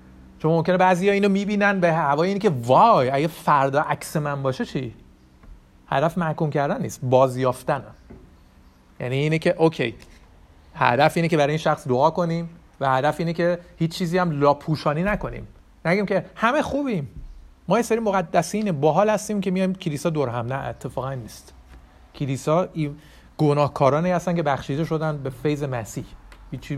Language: Persian